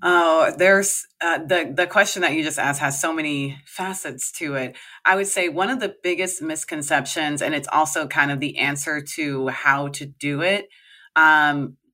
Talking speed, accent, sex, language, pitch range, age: 185 wpm, American, female, English, 150-195 Hz, 30-49